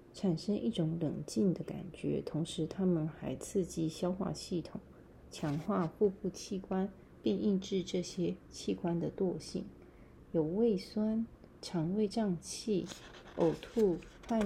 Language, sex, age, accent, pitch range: Chinese, female, 30-49, native, 170-215 Hz